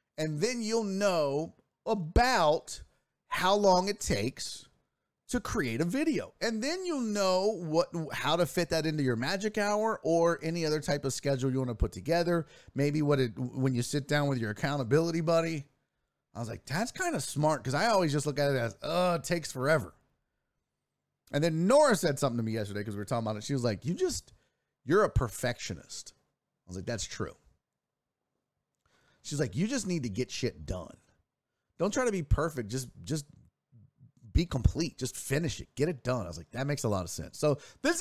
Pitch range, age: 115-170 Hz, 30-49